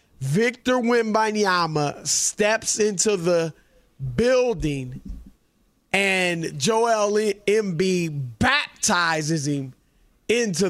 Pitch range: 155-200 Hz